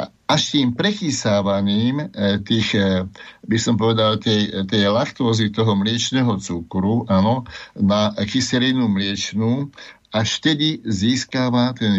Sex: male